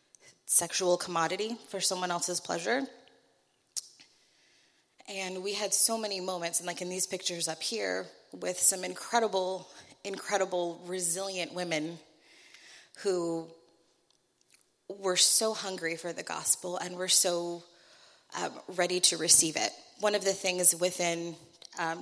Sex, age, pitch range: female, 30-49, 170-195 Hz